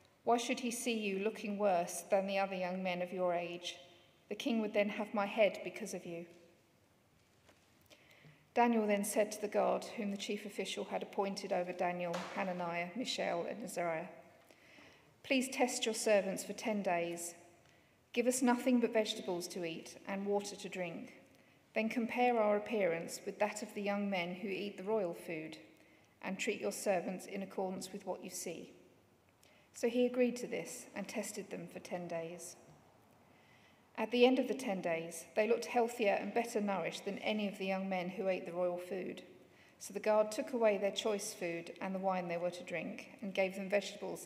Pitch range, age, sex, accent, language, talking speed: 180-220 Hz, 40-59, female, British, English, 190 wpm